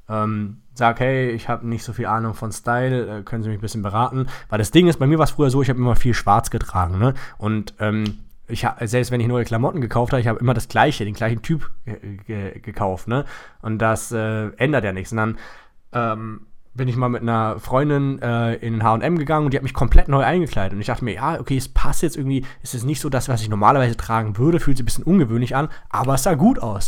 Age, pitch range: 20-39, 110-130 Hz